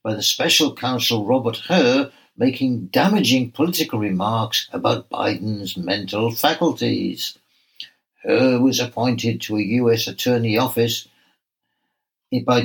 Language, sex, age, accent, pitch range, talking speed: English, male, 60-79, British, 115-130 Hz, 110 wpm